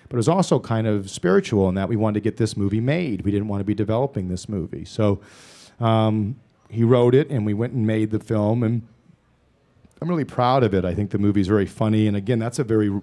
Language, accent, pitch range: English, American, 100-115 Hz